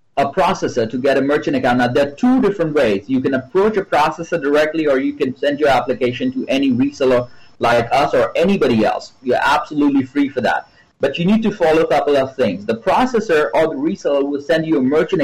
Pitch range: 130-165 Hz